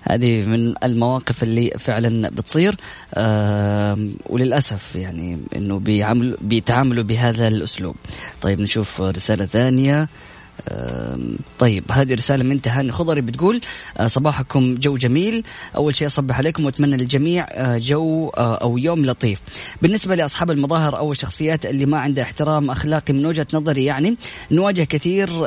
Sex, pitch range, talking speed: female, 125-155 Hz, 125 wpm